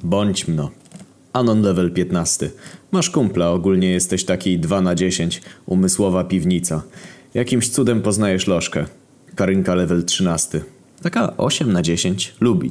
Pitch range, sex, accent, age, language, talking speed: 90-100 Hz, male, native, 20-39, Polish, 125 wpm